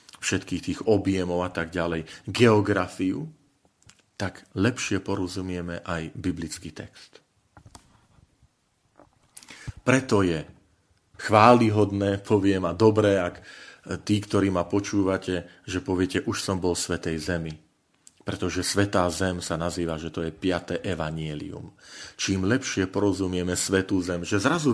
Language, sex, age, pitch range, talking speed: Slovak, male, 40-59, 90-110 Hz, 120 wpm